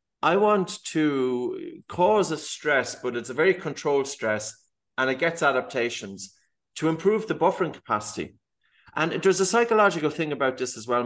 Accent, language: Irish, English